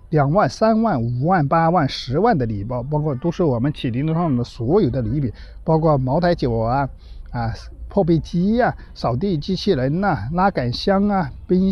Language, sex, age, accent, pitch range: Chinese, male, 50-69, native, 125-180 Hz